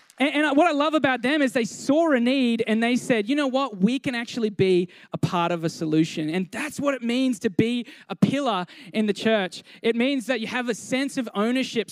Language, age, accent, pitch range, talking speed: English, 20-39, Australian, 180-250 Hz, 235 wpm